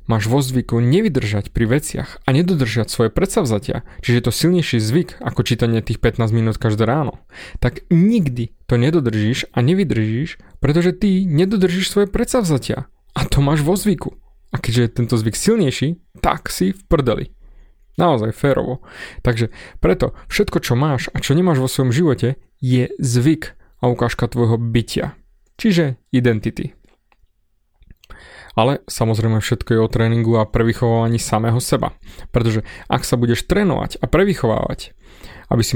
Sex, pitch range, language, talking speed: male, 115-150 Hz, Slovak, 150 wpm